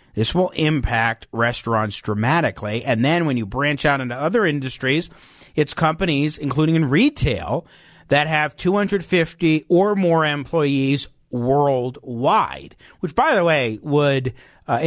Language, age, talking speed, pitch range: English, 50-69, 130 wpm, 125-165 Hz